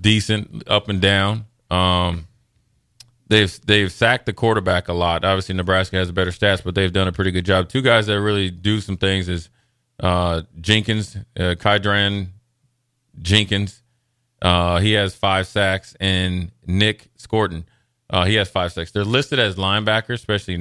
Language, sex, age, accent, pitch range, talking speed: English, male, 30-49, American, 90-115 Hz, 160 wpm